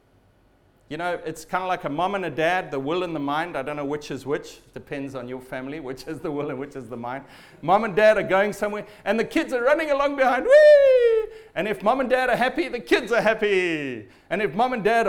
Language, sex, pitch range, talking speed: English, male, 155-230 Hz, 255 wpm